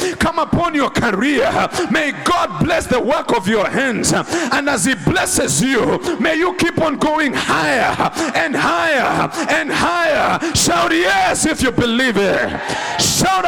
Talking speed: 150 wpm